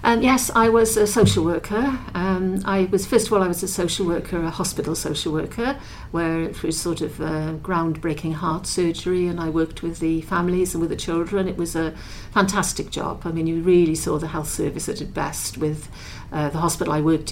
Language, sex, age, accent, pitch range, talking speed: English, female, 50-69, British, 155-180 Hz, 215 wpm